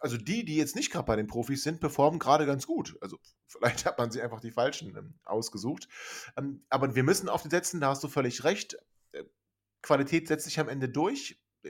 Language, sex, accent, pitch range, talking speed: German, male, German, 115-150 Hz, 205 wpm